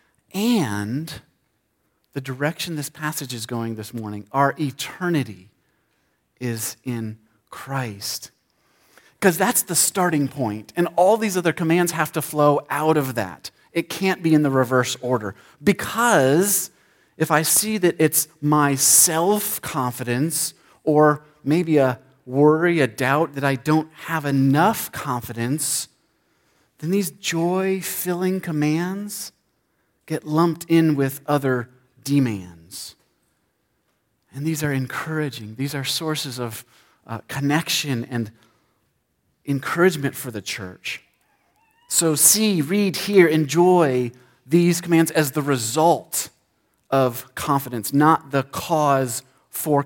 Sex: male